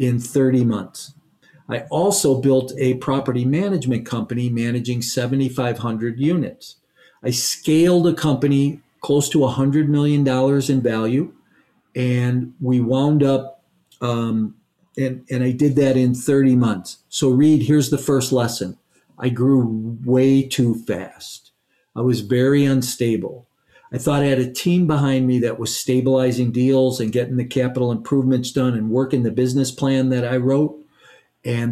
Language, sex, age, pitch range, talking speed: English, male, 50-69, 120-140 Hz, 150 wpm